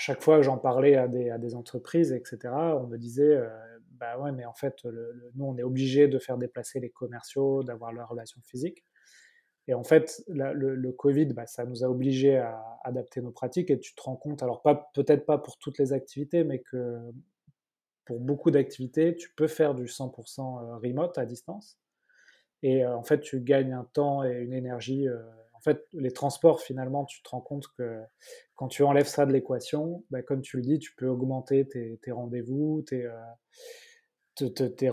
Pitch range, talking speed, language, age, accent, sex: 120-145 Hz, 210 wpm, French, 20-39, French, male